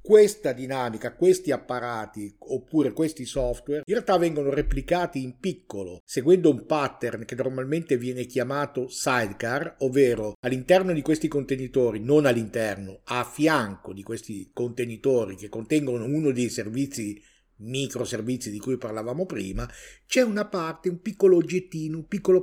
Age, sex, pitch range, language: 50-69, male, 120-175 Hz, Italian